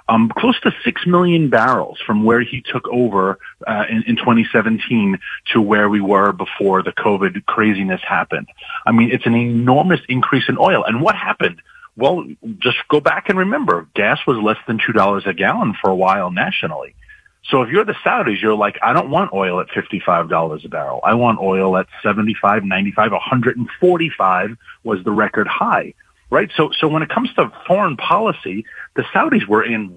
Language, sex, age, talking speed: English, male, 40-59, 180 wpm